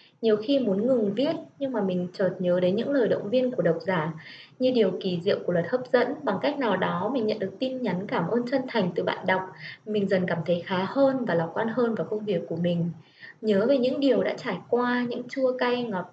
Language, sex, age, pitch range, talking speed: Vietnamese, female, 20-39, 185-255 Hz, 255 wpm